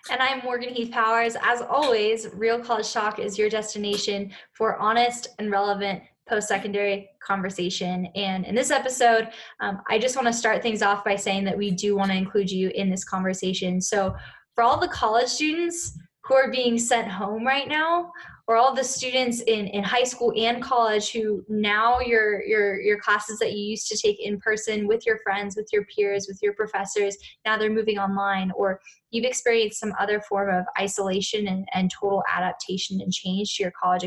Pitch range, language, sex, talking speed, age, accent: 200-240 Hz, English, female, 190 wpm, 10-29, American